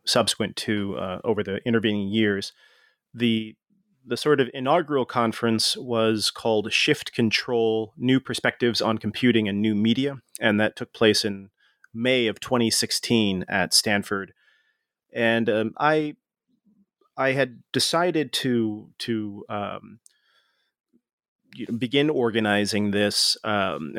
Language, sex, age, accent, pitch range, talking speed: English, male, 30-49, American, 105-125 Hz, 120 wpm